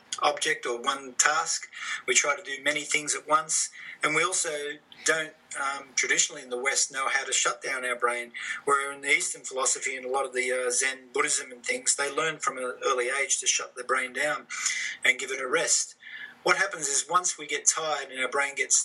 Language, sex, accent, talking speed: English, male, Australian, 225 wpm